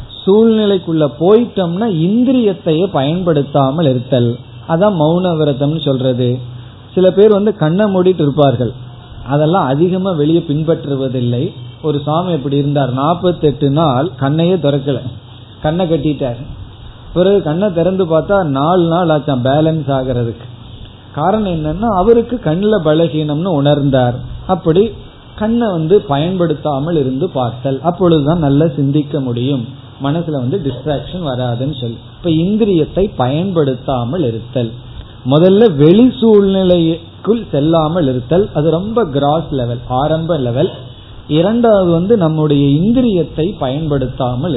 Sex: male